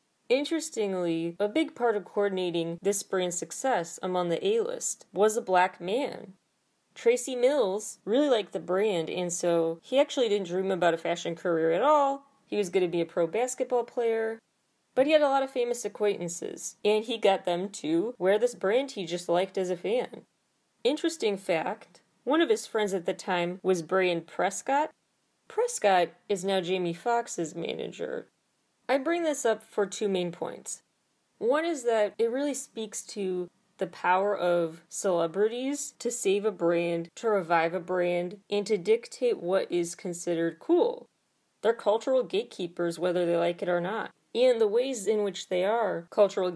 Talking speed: 175 wpm